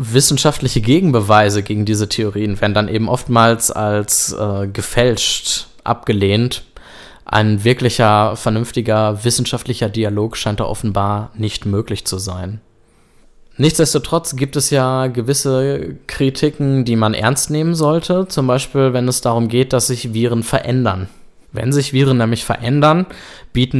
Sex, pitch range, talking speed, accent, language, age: male, 105-130 Hz, 130 wpm, German, German, 20-39